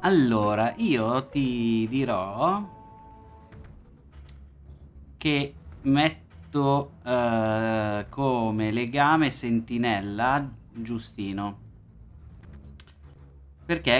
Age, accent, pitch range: 20-39, native, 105-130 Hz